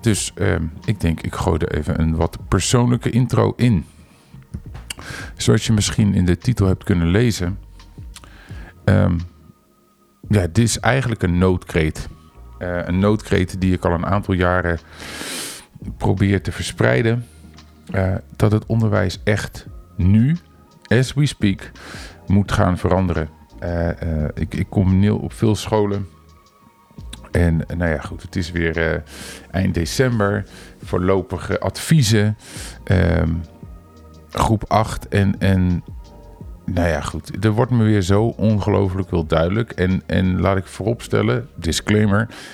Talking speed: 135 wpm